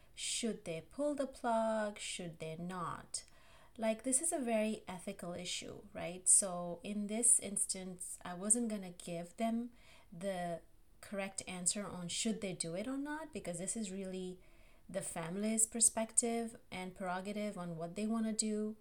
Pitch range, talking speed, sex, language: 175-220 Hz, 160 wpm, female, English